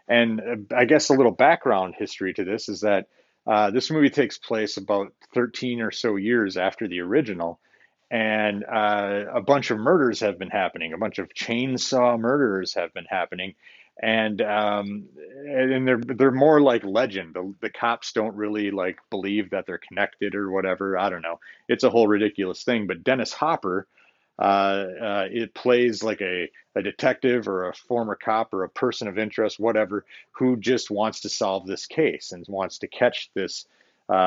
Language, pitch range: English, 100-125 Hz